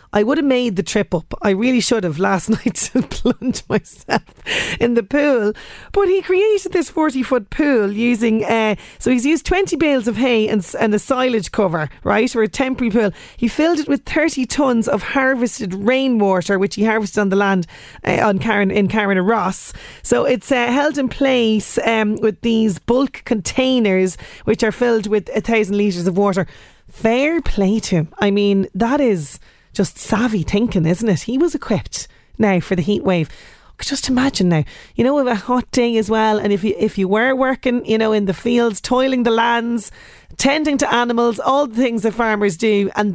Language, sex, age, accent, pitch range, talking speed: English, female, 30-49, Irish, 200-255 Hz, 195 wpm